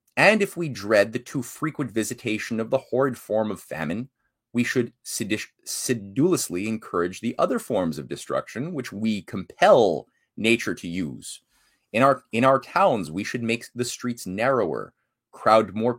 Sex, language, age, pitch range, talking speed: male, English, 30-49, 110-145 Hz, 160 wpm